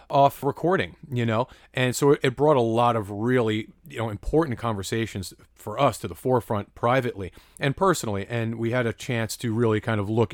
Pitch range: 110-145 Hz